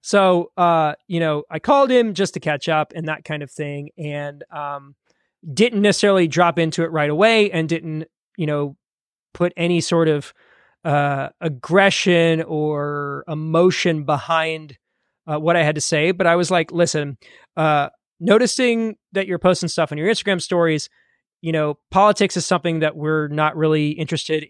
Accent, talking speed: American, 170 wpm